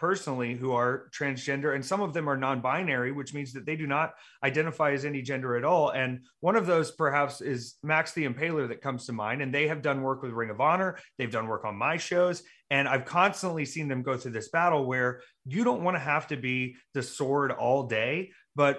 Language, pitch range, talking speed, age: English, 135-170 Hz, 230 wpm, 30-49